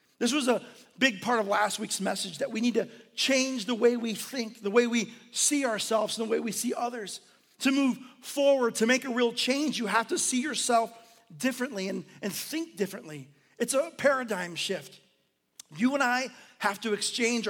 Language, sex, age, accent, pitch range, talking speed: English, male, 40-59, American, 200-245 Hz, 195 wpm